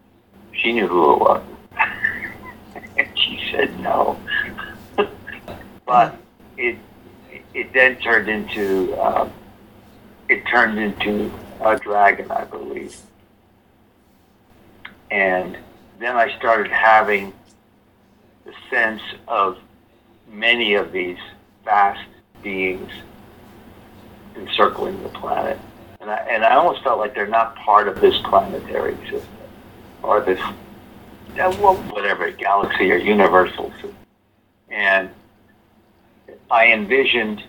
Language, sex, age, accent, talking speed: English, male, 60-79, American, 100 wpm